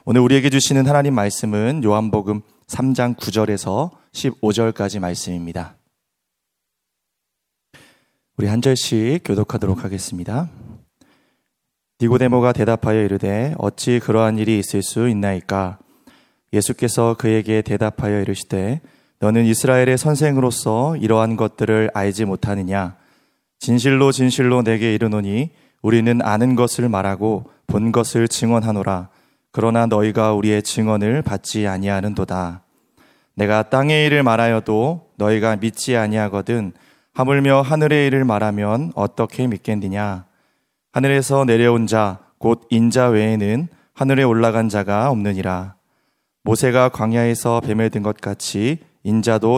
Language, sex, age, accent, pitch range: Korean, male, 30-49, native, 105-125 Hz